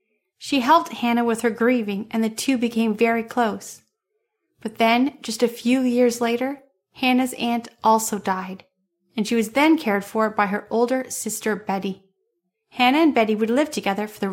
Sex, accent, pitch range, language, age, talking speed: female, American, 205-260 Hz, English, 30-49, 175 wpm